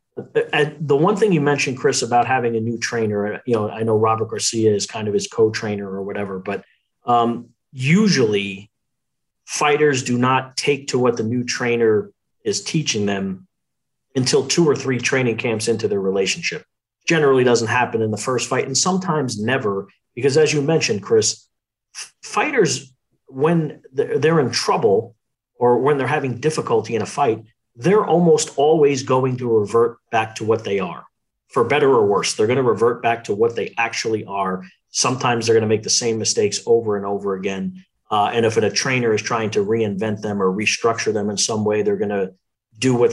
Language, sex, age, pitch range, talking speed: English, male, 40-59, 105-145 Hz, 185 wpm